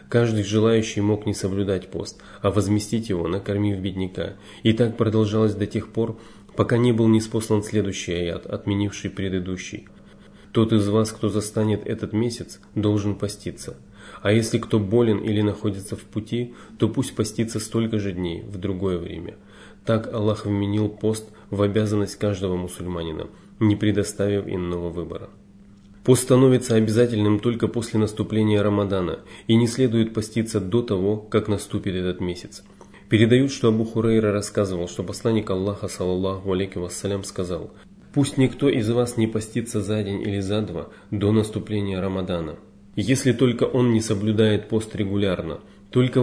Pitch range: 100-110 Hz